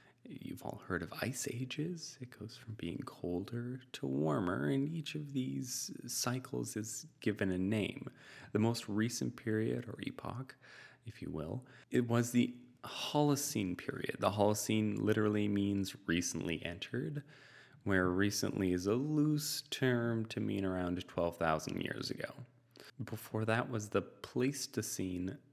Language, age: English, 30-49